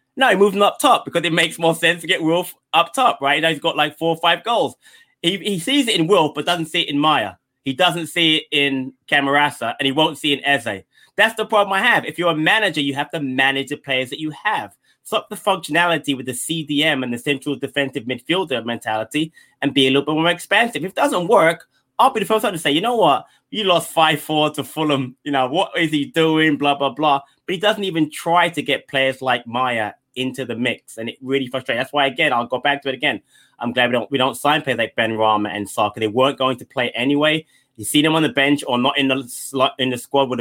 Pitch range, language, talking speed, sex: 130-165 Hz, English, 260 wpm, male